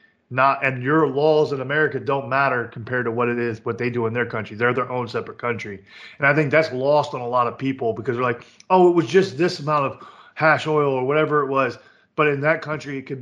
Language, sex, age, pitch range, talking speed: English, male, 20-39, 120-150 Hz, 255 wpm